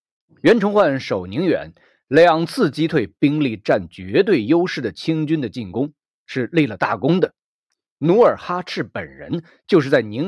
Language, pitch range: Chinese, 110-165 Hz